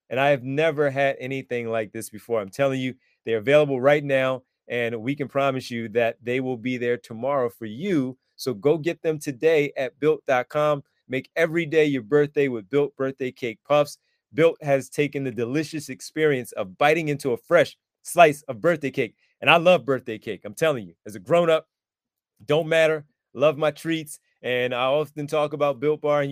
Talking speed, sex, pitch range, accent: 195 wpm, male, 120-150 Hz, American